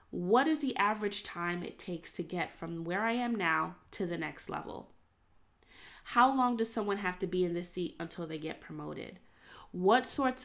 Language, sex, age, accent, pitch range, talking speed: English, female, 20-39, American, 165-205 Hz, 195 wpm